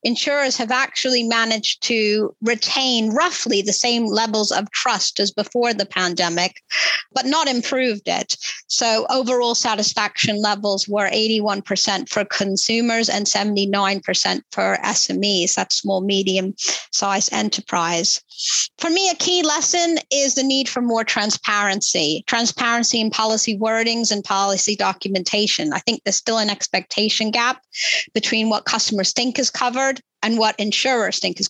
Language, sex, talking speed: English, female, 135 wpm